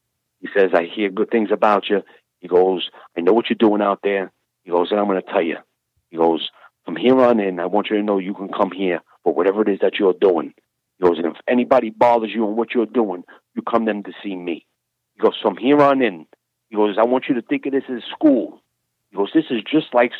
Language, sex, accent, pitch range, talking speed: English, male, American, 95-120 Hz, 260 wpm